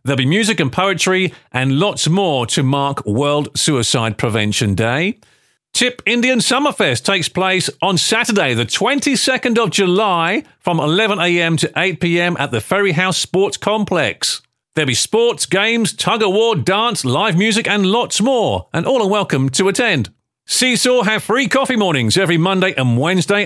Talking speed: 160 wpm